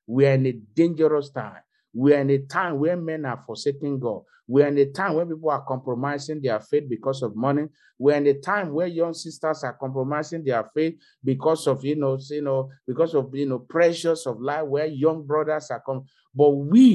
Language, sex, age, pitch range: English, male, 50-69, 130-160 Hz